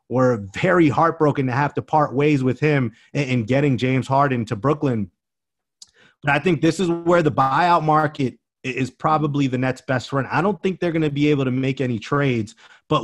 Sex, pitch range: male, 125-155 Hz